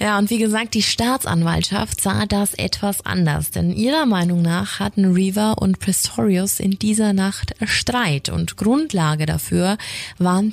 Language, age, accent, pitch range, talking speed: German, 20-39, German, 140-210 Hz, 150 wpm